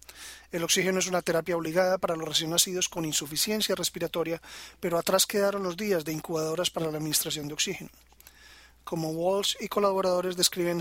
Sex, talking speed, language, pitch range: male, 165 wpm, Spanish, 160-185 Hz